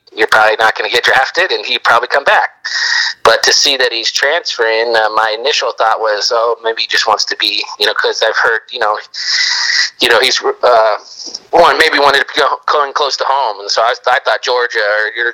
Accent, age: American, 30-49